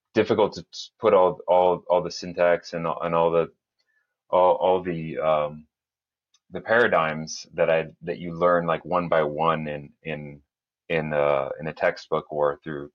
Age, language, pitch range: 30-49, English, 75-95 Hz